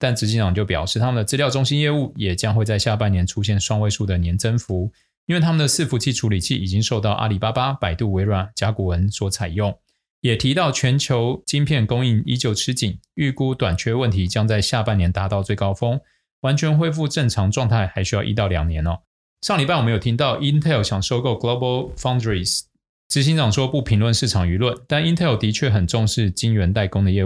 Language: Chinese